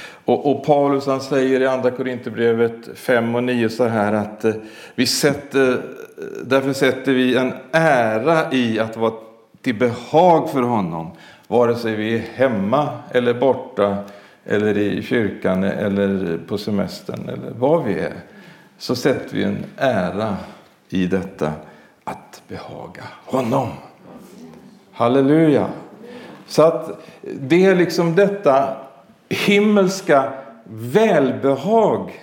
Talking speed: 115 wpm